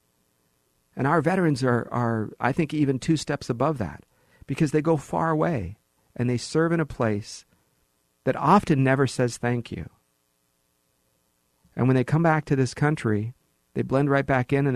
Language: English